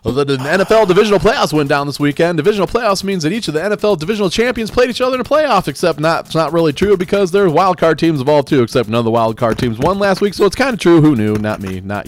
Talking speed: 290 wpm